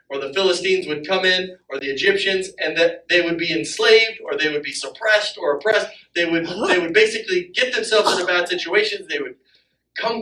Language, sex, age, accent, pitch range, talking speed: English, male, 40-59, American, 170-250 Hz, 205 wpm